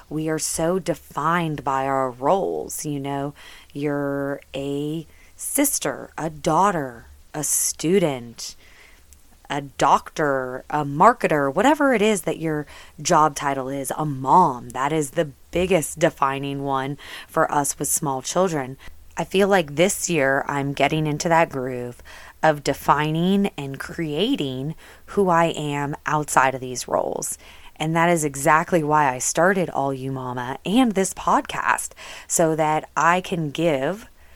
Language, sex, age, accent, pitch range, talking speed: English, female, 20-39, American, 135-165 Hz, 140 wpm